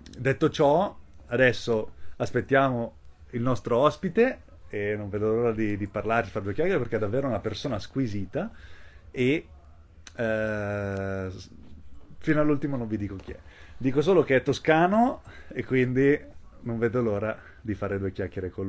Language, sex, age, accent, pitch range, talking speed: Italian, male, 30-49, native, 90-120 Hz, 150 wpm